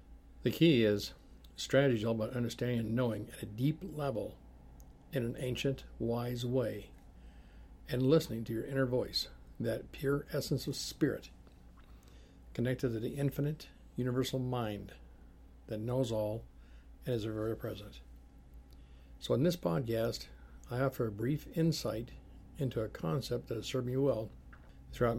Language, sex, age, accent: English, male, 60-79, American